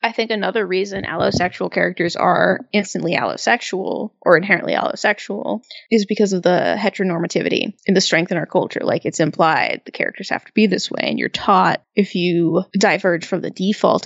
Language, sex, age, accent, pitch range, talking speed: English, female, 20-39, American, 180-220 Hz, 180 wpm